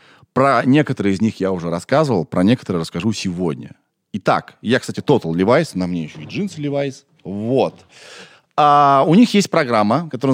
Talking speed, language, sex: 170 wpm, Russian, male